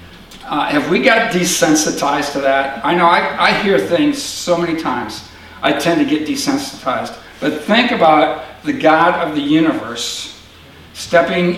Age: 60-79